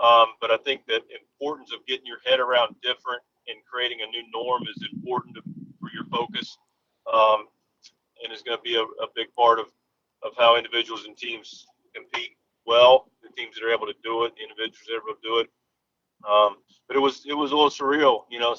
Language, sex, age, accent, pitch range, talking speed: English, male, 40-59, American, 115-135 Hz, 220 wpm